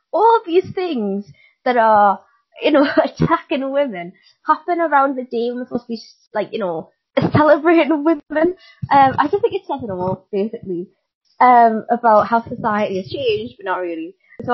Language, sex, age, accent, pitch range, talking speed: English, female, 20-39, British, 185-250 Hz, 170 wpm